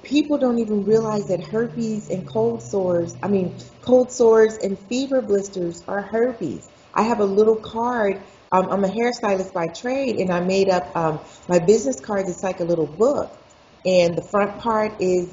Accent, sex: American, female